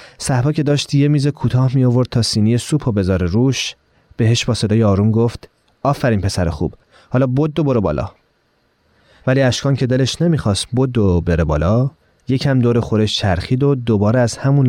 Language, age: Persian, 30-49